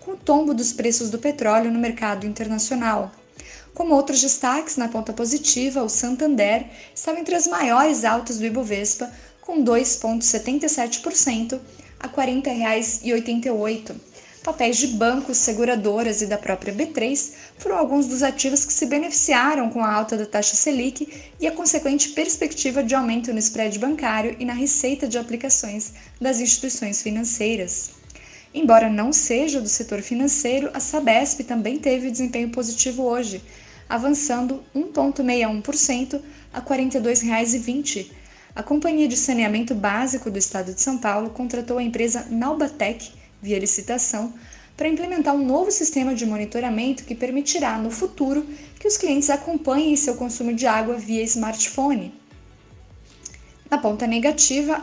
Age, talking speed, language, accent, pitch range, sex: 10-29, 140 wpm, Portuguese, Brazilian, 225-285 Hz, female